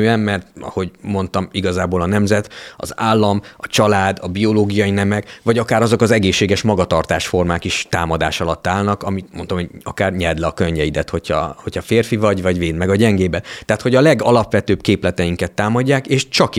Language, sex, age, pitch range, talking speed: English, male, 30-49, 90-110 Hz, 175 wpm